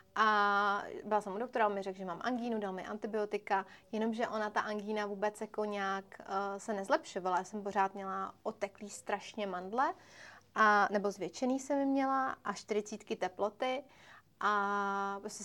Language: Czech